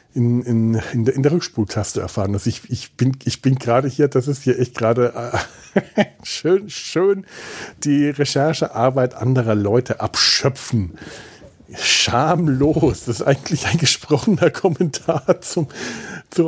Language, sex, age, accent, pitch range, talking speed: German, male, 40-59, German, 110-140 Hz, 140 wpm